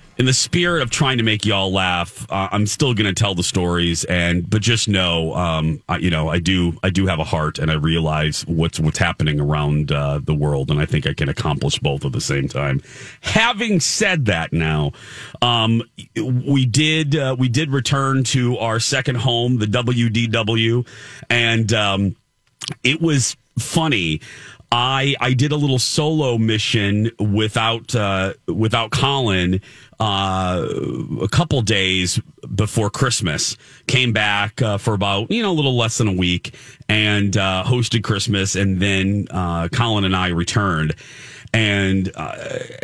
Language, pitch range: English, 90-125 Hz